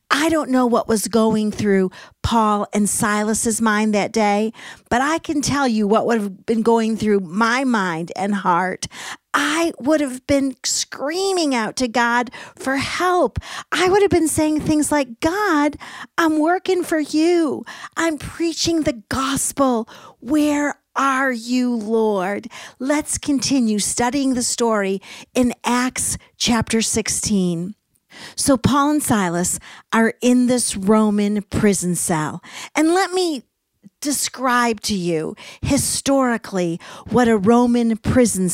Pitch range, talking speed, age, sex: 210-280 Hz, 135 wpm, 50-69, female